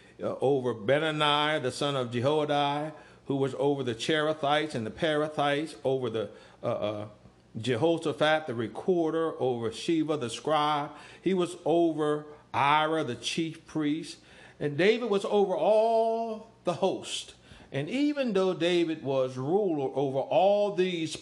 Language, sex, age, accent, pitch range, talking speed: English, male, 60-79, American, 125-165 Hz, 140 wpm